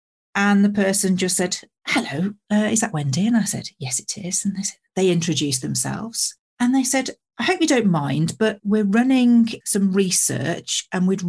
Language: English